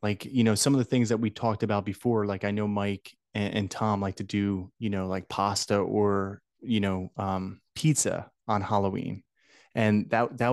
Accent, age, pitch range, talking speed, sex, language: American, 20-39, 100-115 Hz, 205 wpm, male, English